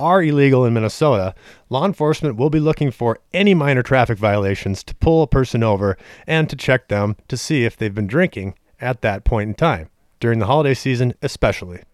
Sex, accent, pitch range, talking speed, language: male, American, 105-145 Hz, 195 wpm, English